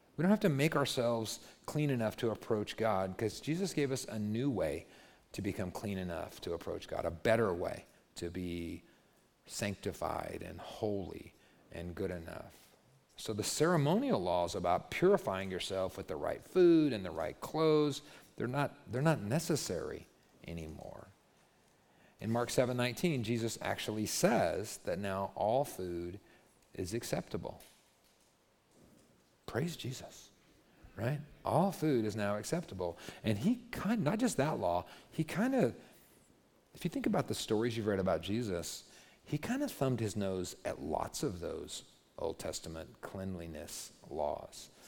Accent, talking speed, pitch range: American, 150 wpm, 100-155 Hz